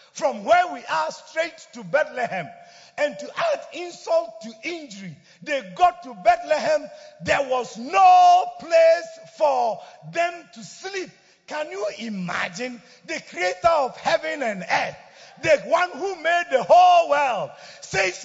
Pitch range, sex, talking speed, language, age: 235-345 Hz, male, 140 wpm, English, 50-69